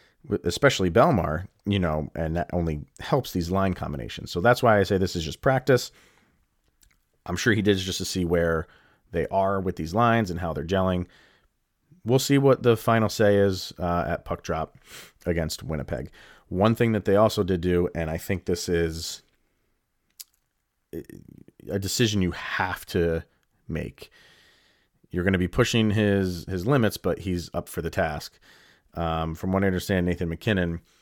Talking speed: 170 wpm